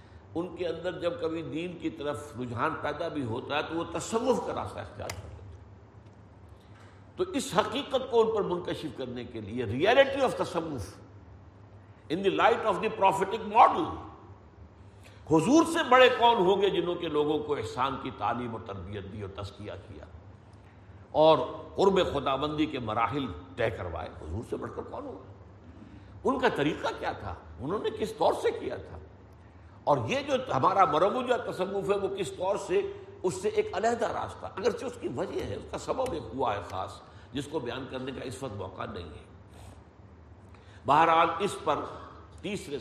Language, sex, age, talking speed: Urdu, male, 60-79, 180 wpm